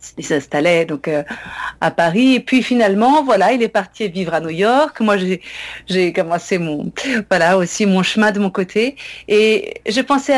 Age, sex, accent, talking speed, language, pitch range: 50-69, female, French, 185 wpm, French, 190-240 Hz